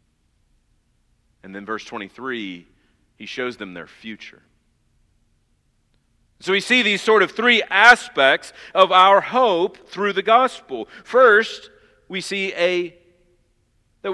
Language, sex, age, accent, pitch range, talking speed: English, male, 40-59, American, 135-190 Hz, 120 wpm